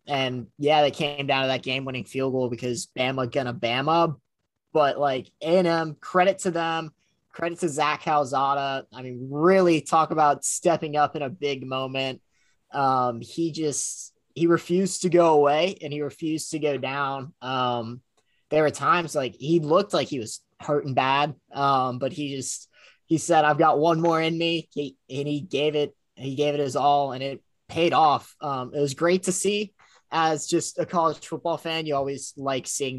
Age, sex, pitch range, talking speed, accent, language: 20-39, male, 130-160 Hz, 190 wpm, American, English